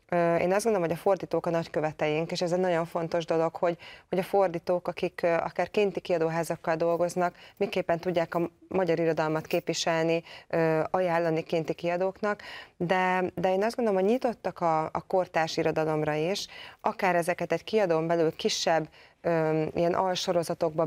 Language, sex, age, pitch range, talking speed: Hungarian, female, 20-39, 160-180 Hz, 145 wpm